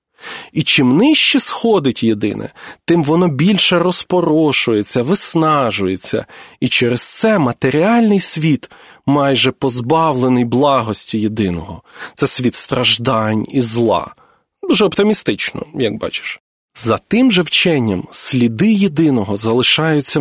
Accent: native